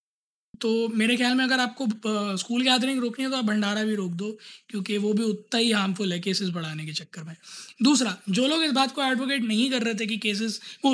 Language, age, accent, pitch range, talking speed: Hindi, 20-39, native, 210-270 Hz, 235 wpm